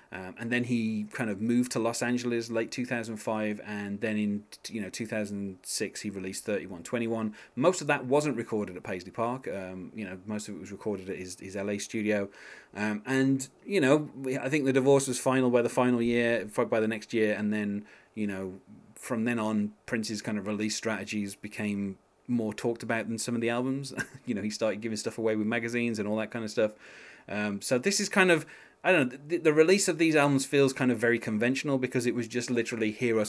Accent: British